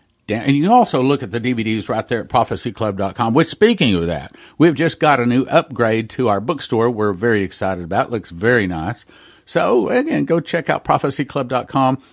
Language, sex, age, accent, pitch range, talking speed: English, male, 50-69, American, 110-145 Hz, 195 wpm